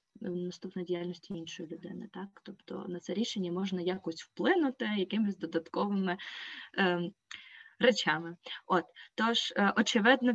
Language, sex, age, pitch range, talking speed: Ukrainian, female, 20-39, 180-215 Hz, 115 wpm